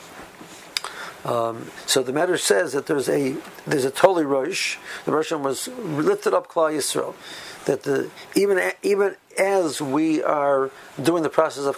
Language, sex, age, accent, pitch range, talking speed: English, male, 60-79, American, 130-150 Hz, 165 wpm